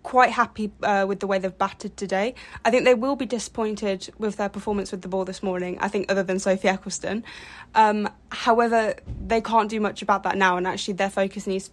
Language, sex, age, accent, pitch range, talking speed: English, female, 10-29, British, 190-215 Hz, 225 wpm